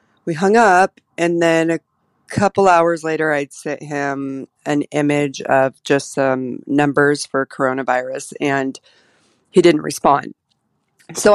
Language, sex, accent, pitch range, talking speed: English, female, American, 140-180 Hz, 130 wpm